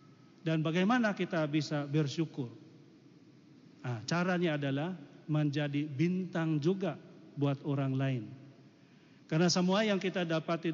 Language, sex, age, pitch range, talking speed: Indonesian, male, 40-59, 145-165 Hz, 100 wpm